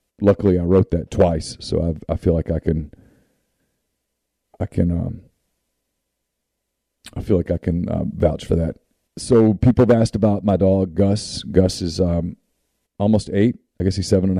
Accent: American